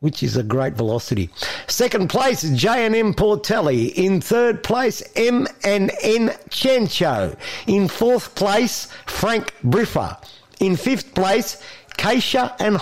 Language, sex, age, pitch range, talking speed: English, male, 50-69, 180-235 Hz, 110 wpm